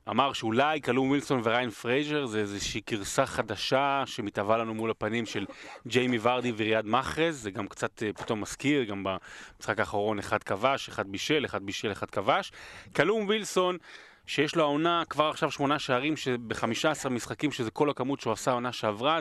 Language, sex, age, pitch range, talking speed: Hebrew, male, 30-49, 110-145 Hz, 165 wpm